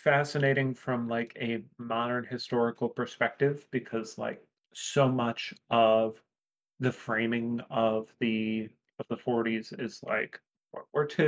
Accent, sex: American, male